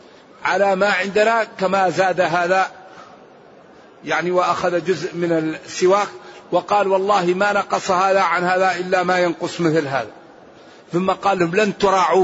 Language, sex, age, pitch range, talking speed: Arabic, male, 50-69, 170-195 Hz, 135 wpm